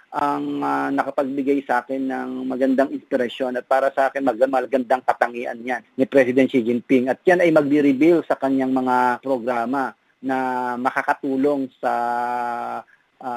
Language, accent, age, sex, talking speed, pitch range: Filipino, native, 40-59, male, 145 wpm, 120-140 Hz